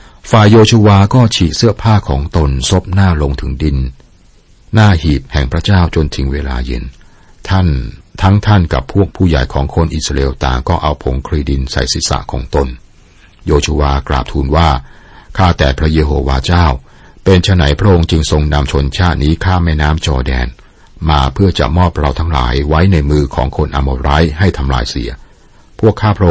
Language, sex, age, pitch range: Thai, male, 60-79, 70-90 Hz